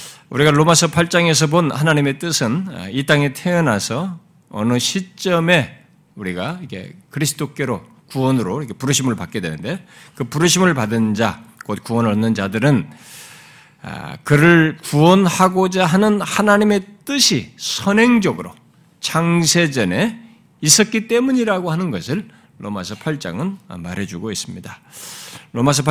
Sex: male